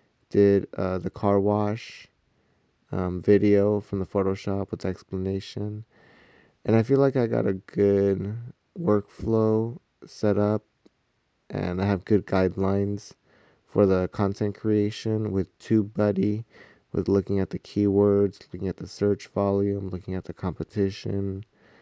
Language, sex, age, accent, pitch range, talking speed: English, male, 30-49, American, 95-105 Hz, 135 wpm